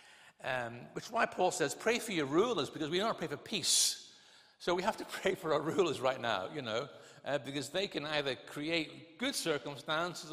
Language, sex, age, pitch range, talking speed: English, male, 50-69, 130-175 Hz, 215 wpm